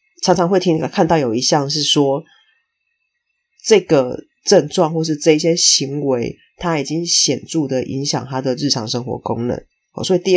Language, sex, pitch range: Chinese, female, 130-160 Hz